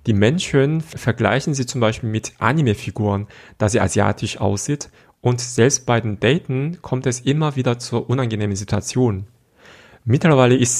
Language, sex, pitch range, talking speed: German, male, 105-125 Hz, 145 wpm